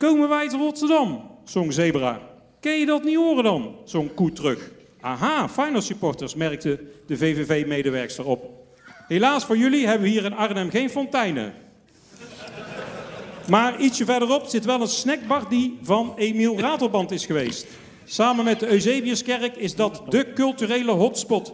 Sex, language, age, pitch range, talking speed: male, Dutch, 50-69, 220-255 Hz, 155 wpm